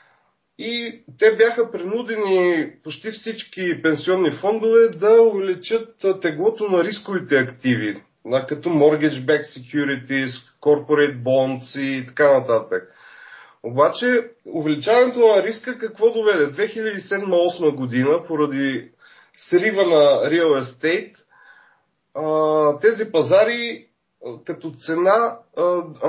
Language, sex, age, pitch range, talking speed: Bulgarian, male, 30-49, 150-220 Hz, 90 wpm